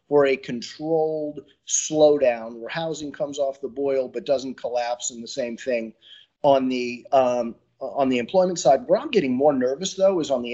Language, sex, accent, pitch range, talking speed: English, male, American, 135-185 Hz, 190 wpm